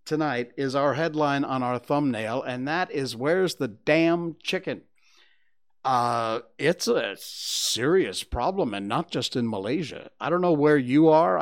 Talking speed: 160 wpm